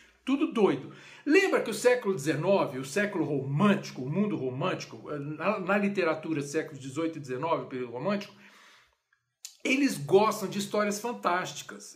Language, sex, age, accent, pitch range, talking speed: Portuguese, male, 60-79, Brazilian, 165-250 Hz, 140 wpm